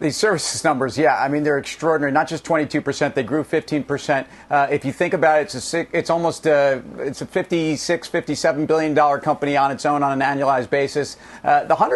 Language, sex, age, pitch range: English, male, 40-59, 145-170 Hz